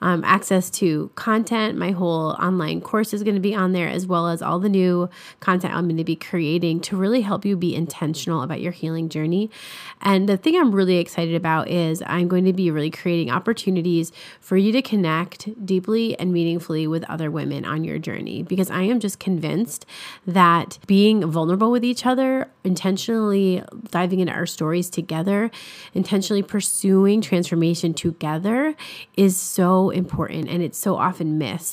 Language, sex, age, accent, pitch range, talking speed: English, female, 30-49, American, 170-200 Hz, 175 wpm